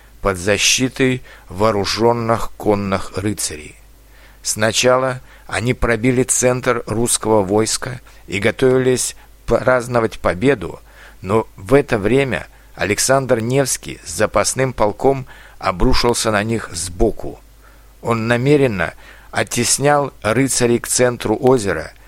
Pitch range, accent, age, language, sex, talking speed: 100-130 Hz, native, 60-79, Russian, male, 95 wpm